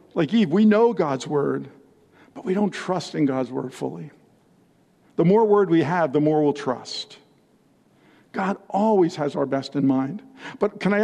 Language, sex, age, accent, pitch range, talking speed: English, male, 50-69, American, 150-205 Hz, 180 wpm